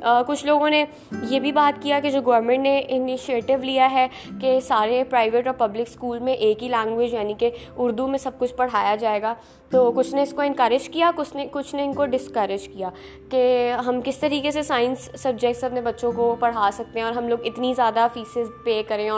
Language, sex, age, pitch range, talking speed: Urdu, female, 20-39, 235-285 Hz, 215 wpm